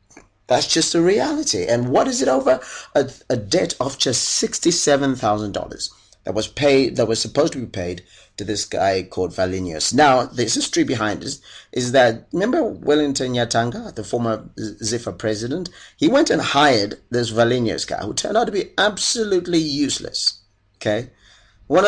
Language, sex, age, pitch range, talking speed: English, male, 30-49, 100-140 Hz, 160 wpm